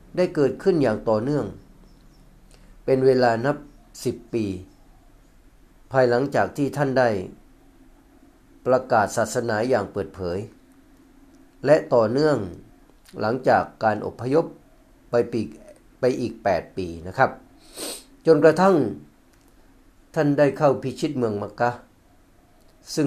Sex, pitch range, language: male, 120-150 Hz, Thai